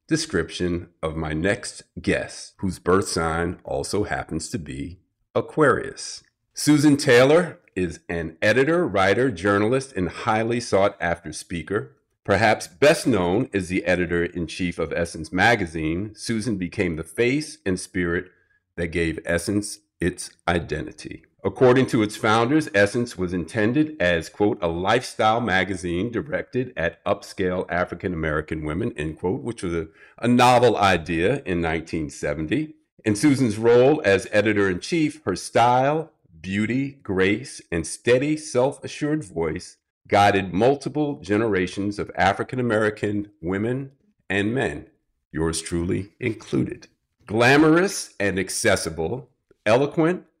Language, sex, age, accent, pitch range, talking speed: English, male, 50-69, American, 85-125 Hz, 120 wpm